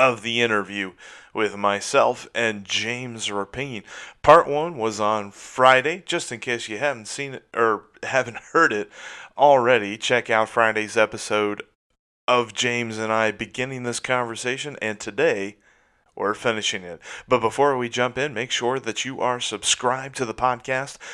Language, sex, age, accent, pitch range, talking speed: English, male, 30-49, American, 105-125 Hz, 155 wpm